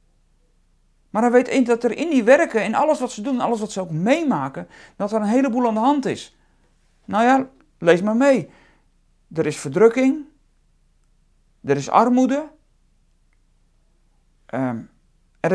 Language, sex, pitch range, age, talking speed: Dutch, male, 185-265 Hz, 40-59, 145 wpm